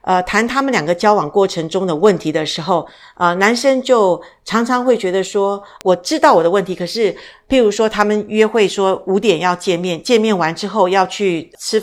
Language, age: Chinese, 50-69